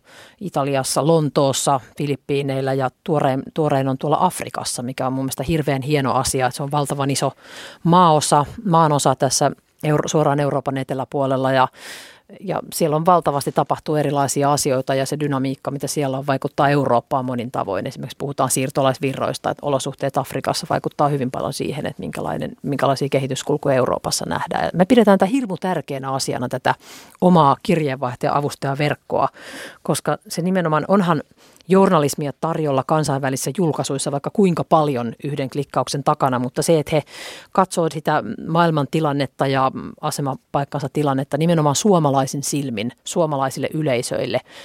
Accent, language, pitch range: native, Finnish, 135-160 Hz